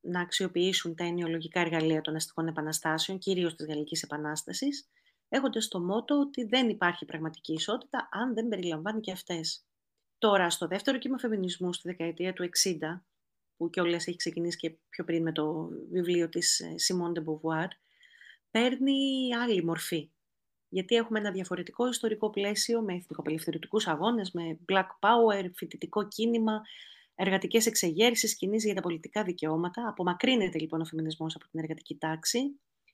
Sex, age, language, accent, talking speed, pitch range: female, 30-49, Greek, native, 145 wpm, 165-225 Hz